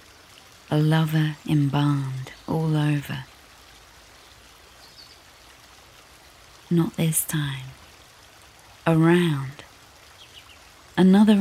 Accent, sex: British, female